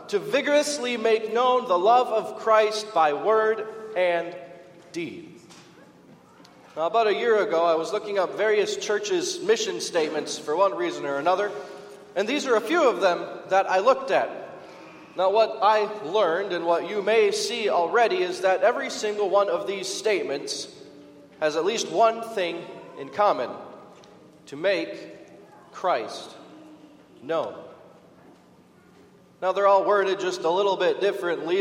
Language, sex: English, male